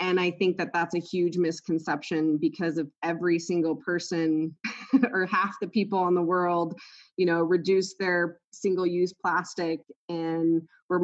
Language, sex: English, female